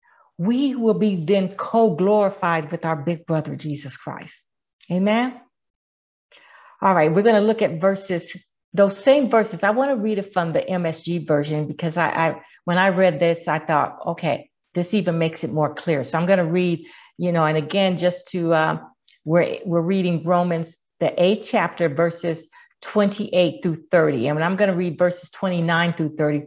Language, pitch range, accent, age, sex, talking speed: English, 160-195 Hz, American, 50-69, female, 180 wpm